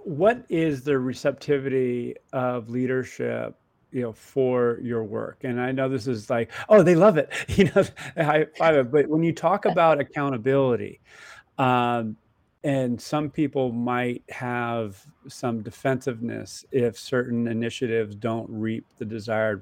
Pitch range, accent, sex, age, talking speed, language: 115-135 Hz, American, male, 30-49, 140 wpm, English